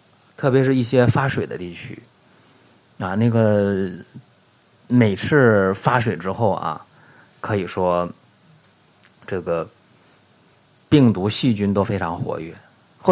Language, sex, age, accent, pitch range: Chinese, male, 30-49, native, 100-145 Hz